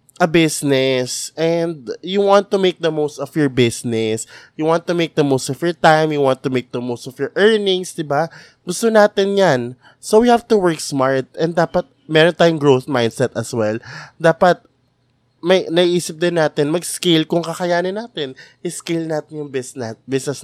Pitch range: 130-170 Hz